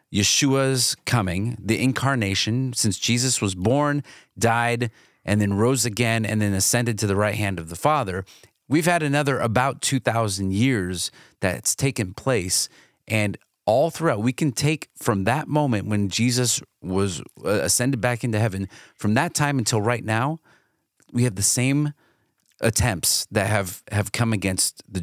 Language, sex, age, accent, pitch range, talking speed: English, male, 30-49, American, 95-125 Hz, 155 wpm